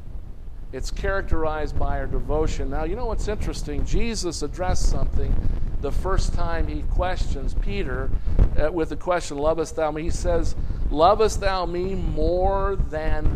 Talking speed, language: 150 wpm, English